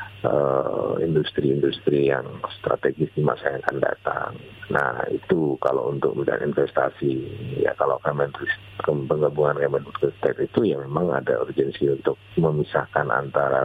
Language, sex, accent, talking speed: Indonesian, male, native, 115 wpm